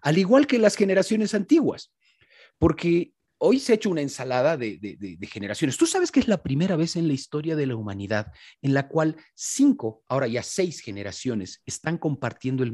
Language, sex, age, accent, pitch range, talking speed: Spanish, male, 40-59, Mexican, 140-210 Hz, 195 wpm